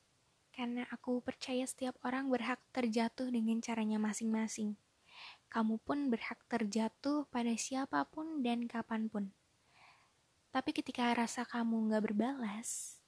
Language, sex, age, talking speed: Indonesian, female, 20-39, 110 wpm